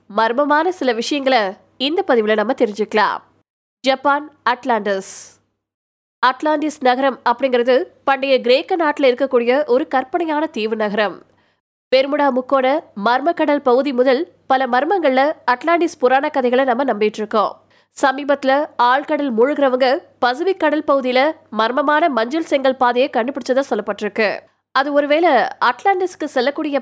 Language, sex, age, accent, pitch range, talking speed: Tamil, female, 20-39, native, 245-300 Hz, 75 wpm